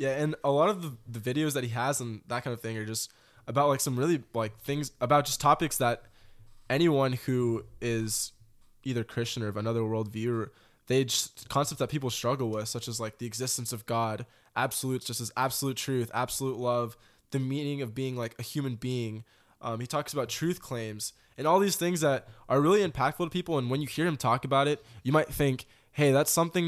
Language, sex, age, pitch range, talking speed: English, male, 20-39, 115-140 Hz, 220 wpm